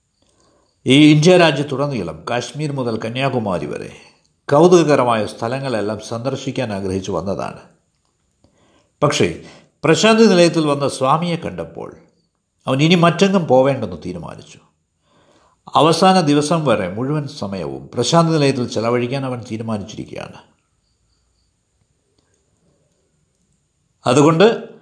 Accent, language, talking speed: native, Malayalam, 80 wpm